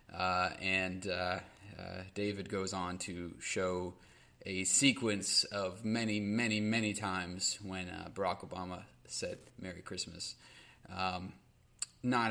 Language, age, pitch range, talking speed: English, 20-39, 95-120 Hz, 120 wpm